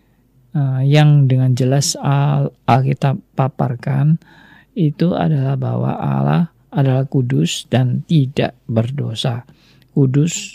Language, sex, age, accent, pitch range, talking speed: Indonesian, male, 50-69, native, 130-155 Hz, 90 wpm